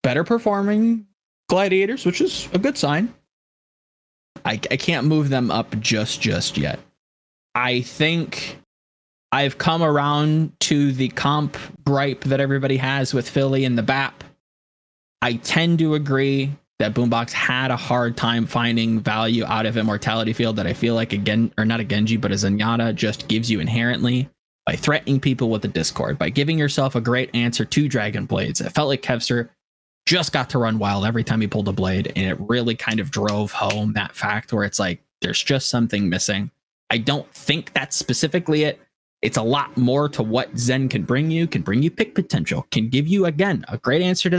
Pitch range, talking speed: 115-160 Hz, 190 wpm